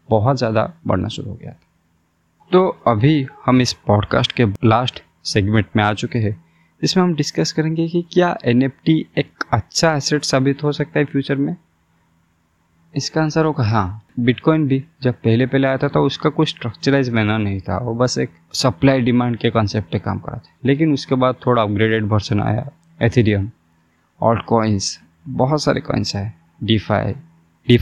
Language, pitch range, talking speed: Hindi, 105-130 Hz, 170 wpm